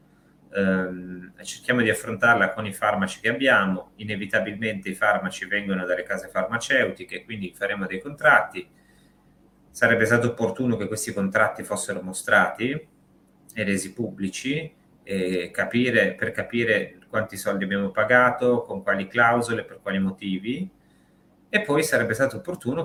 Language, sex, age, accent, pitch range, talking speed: Italian, male, 30-49, native, 95-120 Hz, 125 wpm